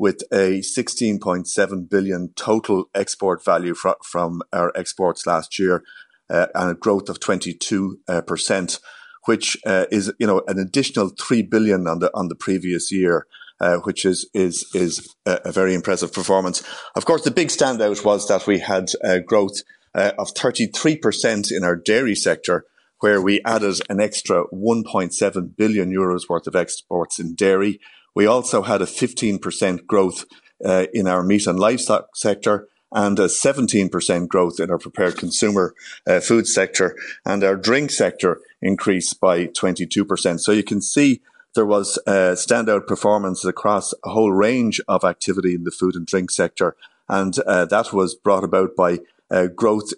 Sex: male